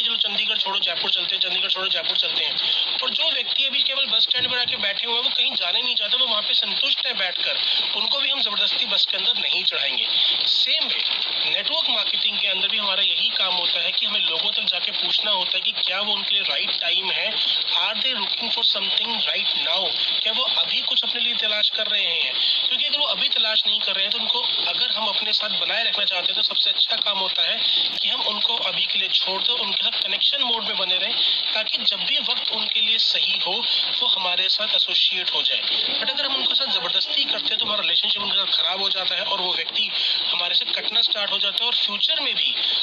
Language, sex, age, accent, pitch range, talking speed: Hindi, male, 30-49, native, 190-235 Hz, 155 wpm